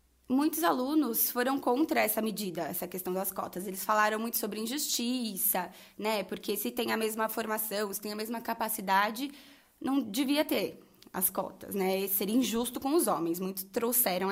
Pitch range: 195-275 Hz